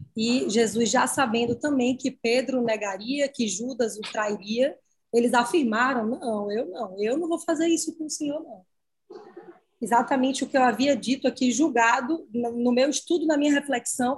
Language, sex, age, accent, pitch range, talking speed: Portuguese, female, 20-39, Brazilian, 235-305 Hz, 170 wpm